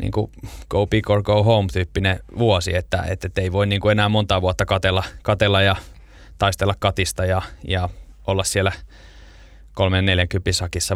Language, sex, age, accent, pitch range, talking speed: Finnish, male, 20-39, native, 90-100 Hz, 160 wpm